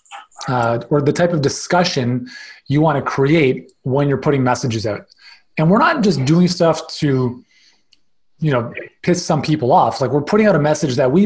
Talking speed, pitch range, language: 190 wpm, 135-185 Hz, English